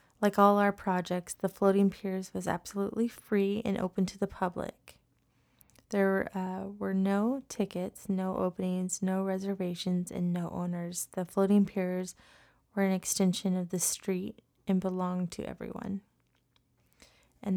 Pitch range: 180-200 Hz